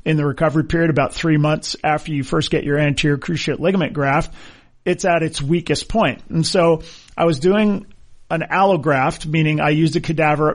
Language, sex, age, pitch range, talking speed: English, male, 40-59, 145-170 Hz, 190 wpm